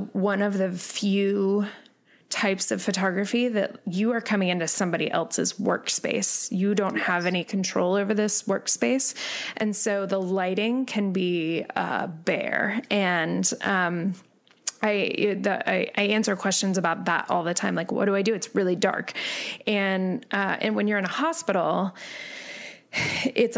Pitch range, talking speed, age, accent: 185-220 Hz, 155 wpm, 20-39, American